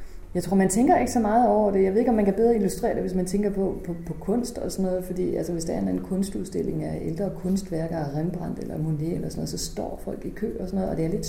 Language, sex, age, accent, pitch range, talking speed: Danish, female, 30-49, native, 150-185 Hz, 305 wpm